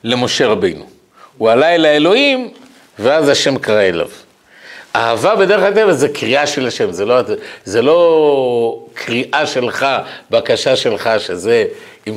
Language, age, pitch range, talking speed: Hebrew, 50-69, 125-190 Hz, 135 wpm